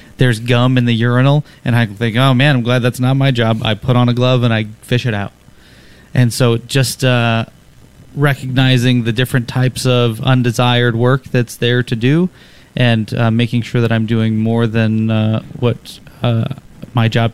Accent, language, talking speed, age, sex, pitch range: American, English, 190 wpm, 30-49, male, 120-175 Hz